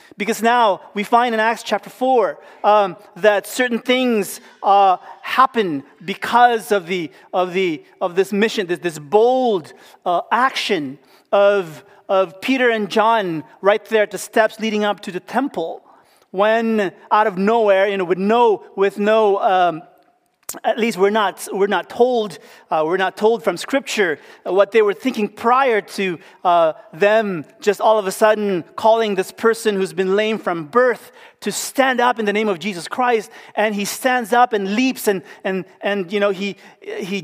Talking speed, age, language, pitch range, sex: 175 wpm, 30-49, English, 200-240 Hz, male